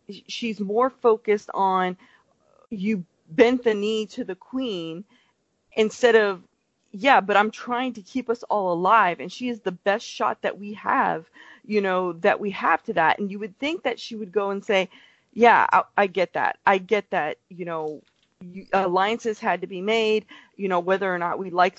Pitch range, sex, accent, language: 190-250 Hz, female, American, English